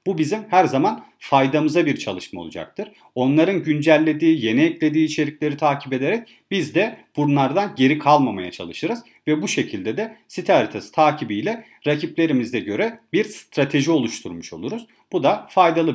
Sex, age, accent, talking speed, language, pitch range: male, 40-59, native, 140 wpm, Turkish, 150-180 Hz